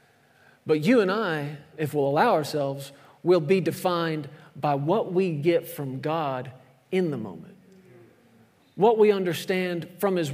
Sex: male